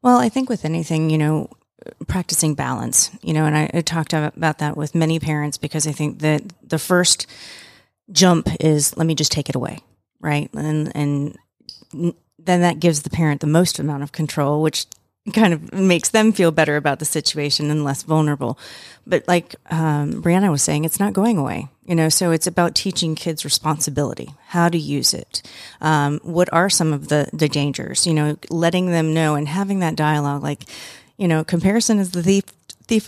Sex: female